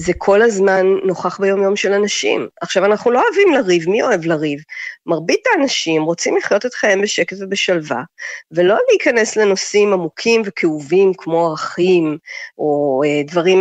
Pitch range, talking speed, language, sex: 160-200 Hz, 150 wpm, Hebrew, female